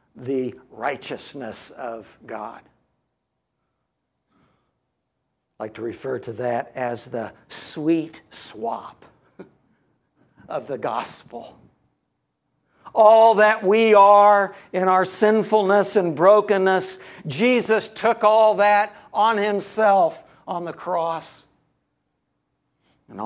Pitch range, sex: 115-185 Hz, male